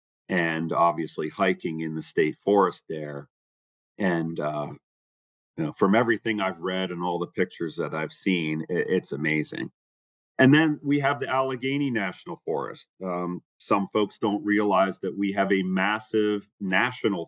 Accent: American